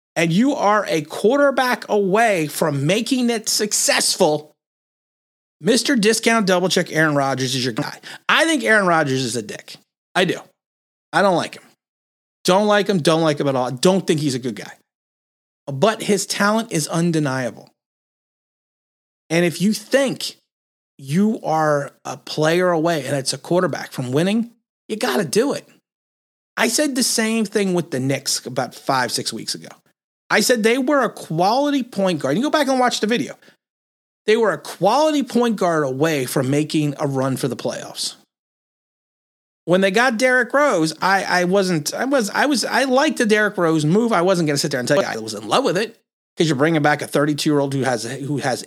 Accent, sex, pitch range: American, male, 145-225 Hz